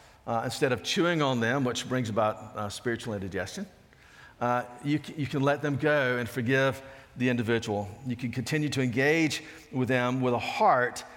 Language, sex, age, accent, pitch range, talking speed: English, male, 50-69, American, 115-135 Hz, 175 wpm